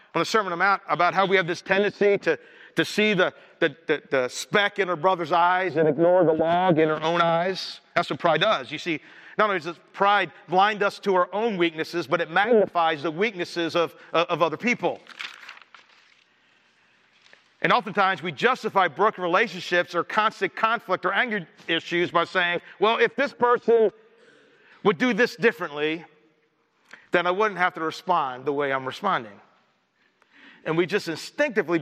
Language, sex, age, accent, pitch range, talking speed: English, male, 50-69, American, 160-205 Hz, 175 wpm